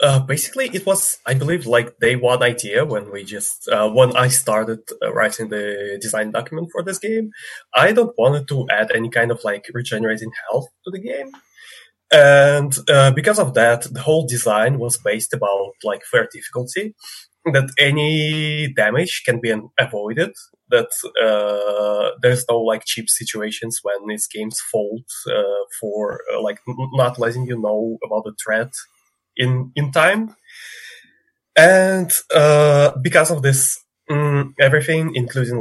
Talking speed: 155 wpm